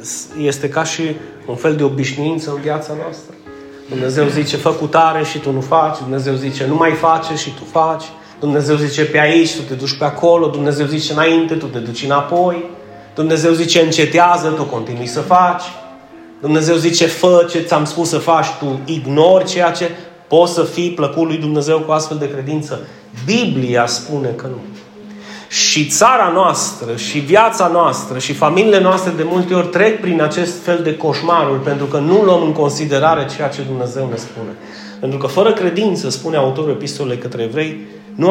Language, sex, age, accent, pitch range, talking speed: Romanian, male, 30-49, native, 140-175 Hz, 175 wpm